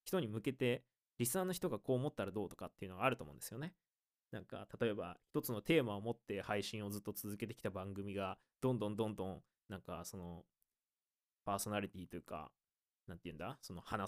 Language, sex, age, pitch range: Japanese, male, 20-39, 100-125 Hz